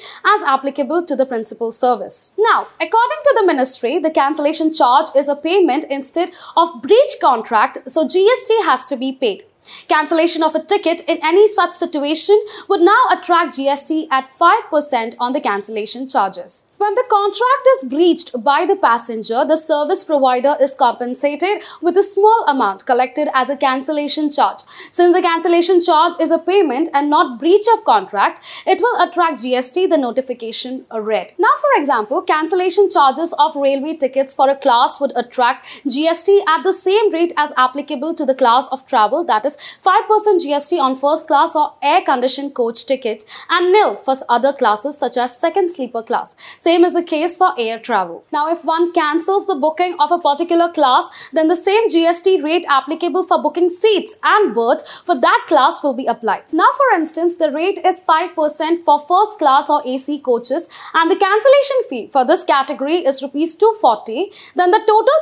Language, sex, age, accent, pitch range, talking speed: English, female, 20-39, Indian, 275-365 Hz, 175 wpm